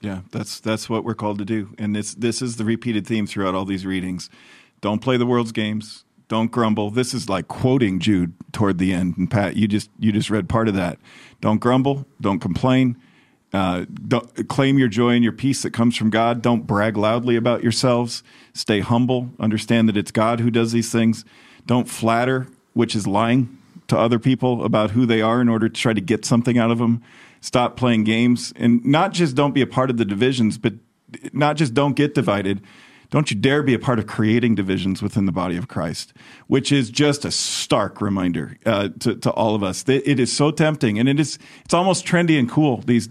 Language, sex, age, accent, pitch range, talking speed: English, male, 40-59, American, 105-125 Hz, 215 wpm